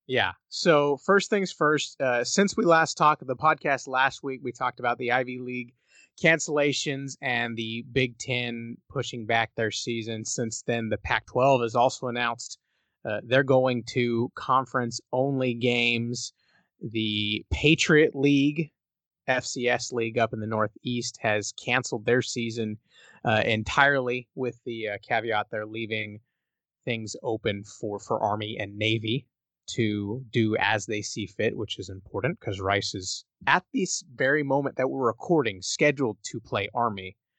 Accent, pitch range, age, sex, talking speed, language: American, 105-130 Hz, 30-49, male, 150 wpm, English